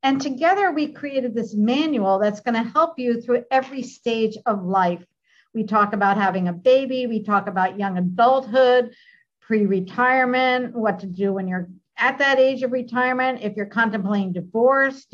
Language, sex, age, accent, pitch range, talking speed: English, female, 50-69, American, 200-265 Hz, 170 wpm